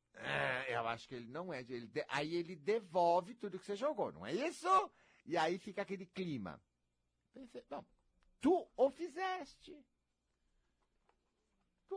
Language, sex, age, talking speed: Portuguese, male, 60-79, 125 wpm